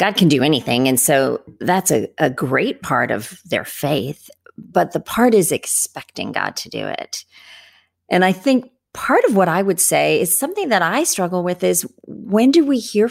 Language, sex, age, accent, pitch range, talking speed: English, female, 40-59, American, 180-260 Hz, 195 wpm